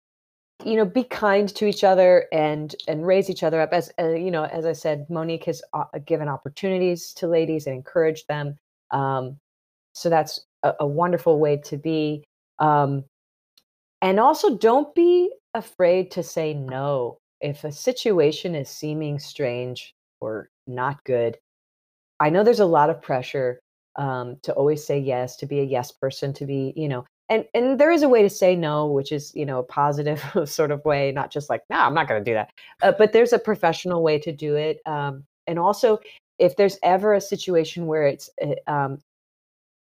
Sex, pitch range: female, 140-175 Hz